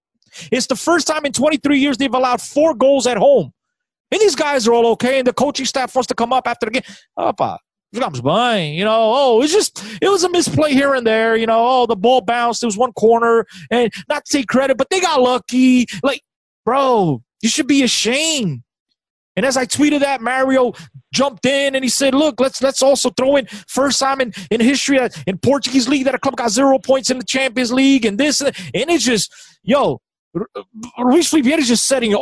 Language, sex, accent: English, male, American